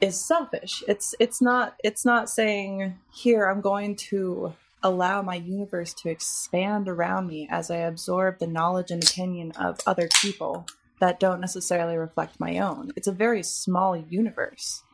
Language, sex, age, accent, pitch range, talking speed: English, female, 20-39, American, 170-220 Hz, 160 wpm